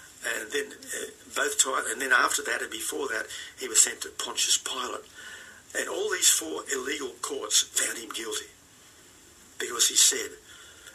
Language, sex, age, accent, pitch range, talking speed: English, male, 50-69, Australian, 375-440 Hz, 165 wpm